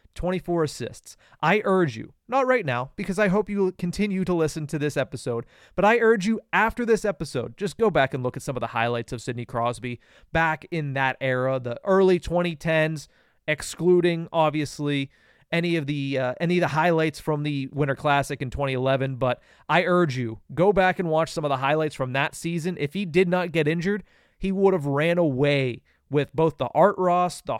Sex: male